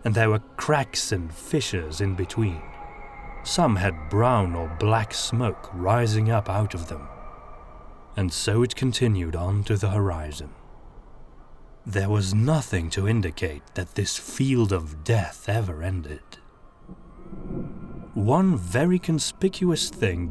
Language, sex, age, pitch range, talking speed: English, male, 30-49, 90-120 Hz, 125 wpm